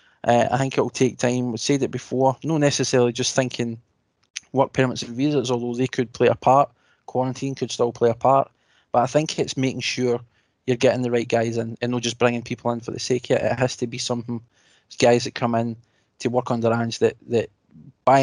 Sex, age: male, 20-39